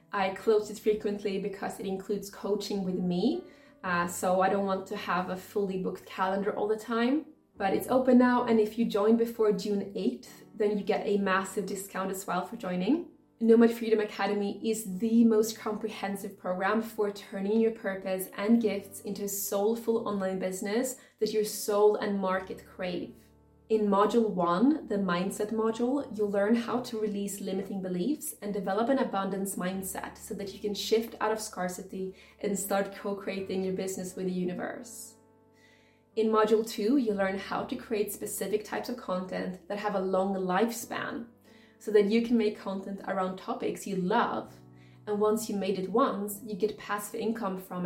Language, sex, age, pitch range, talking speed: English, female, 20-39, 195-220 Hz, 180 wpm